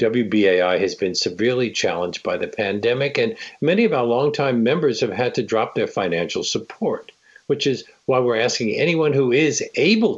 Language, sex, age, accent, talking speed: English, male, 60-79, American, 175 wpm